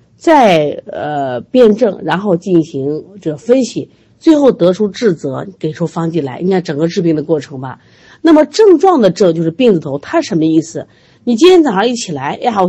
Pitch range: 155-250 Hz